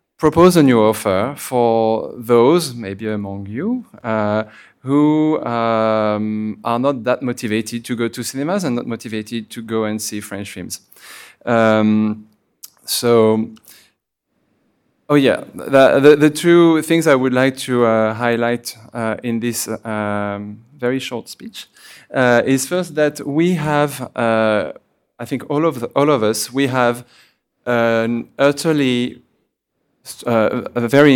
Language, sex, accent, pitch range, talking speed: English, male, French, 110-130 Hz, 135 wpm